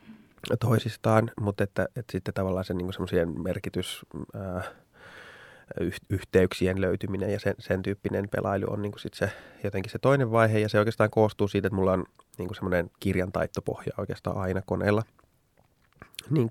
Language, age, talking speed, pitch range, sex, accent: Finnish, 20-39, 140 wpm, 90-110 Hz, male, native